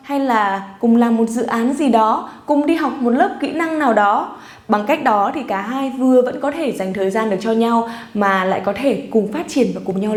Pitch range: 205-270 Hz